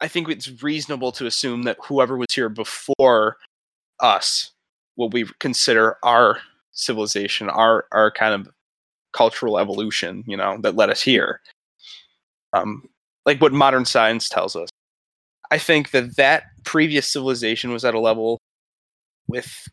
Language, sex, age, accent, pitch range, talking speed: English, male, 20-39, American, 115-140 Hz, 145 wpm